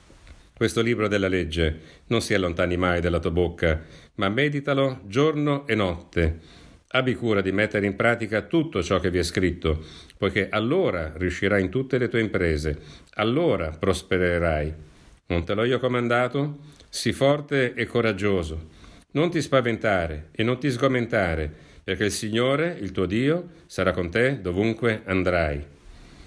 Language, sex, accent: Italian, male, native